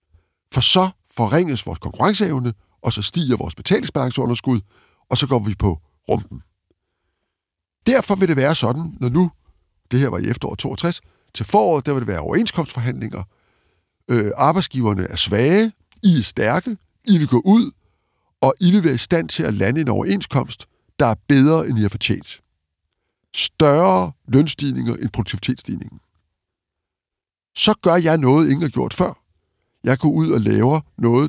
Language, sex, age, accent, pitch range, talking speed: Danish, male, 60-79, native, 105-165 Hz, 160 wpm